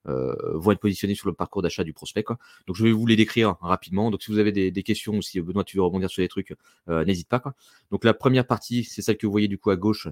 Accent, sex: French, male